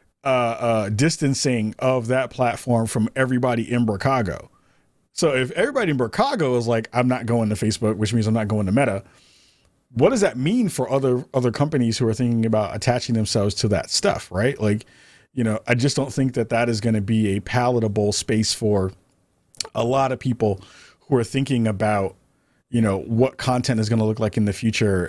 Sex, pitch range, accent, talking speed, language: male, 110-130 Hz, American, 200 wpm, English